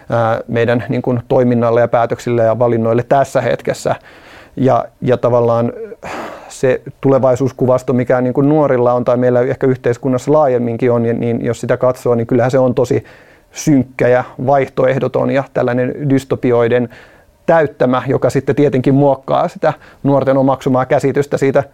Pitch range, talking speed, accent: 125-135 Hz, 130 wpm, native